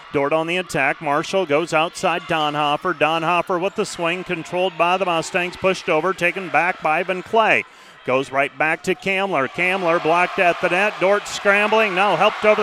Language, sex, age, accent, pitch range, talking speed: English, male, 40-59, American, 170-205 Hz, 180 wpm